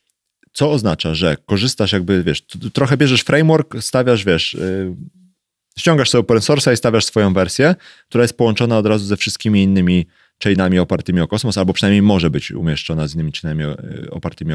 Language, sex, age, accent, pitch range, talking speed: Polish, male, 30-49, native, 85-110 Hz, 170 wpm